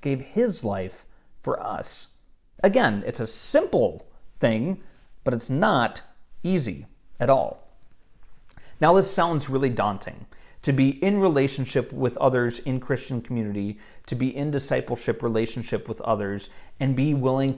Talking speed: 135 wpm